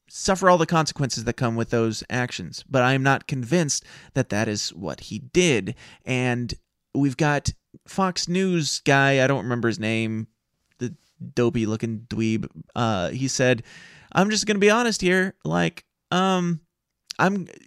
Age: 30-49